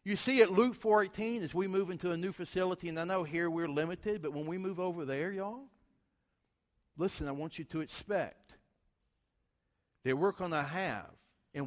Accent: American